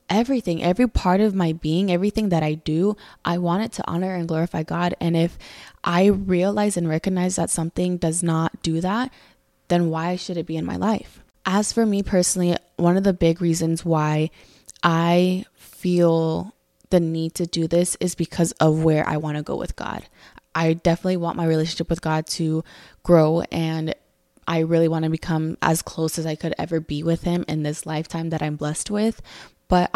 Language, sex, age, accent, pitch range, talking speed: English, female, 20-39, American, 160-180 Hz, 195 wpm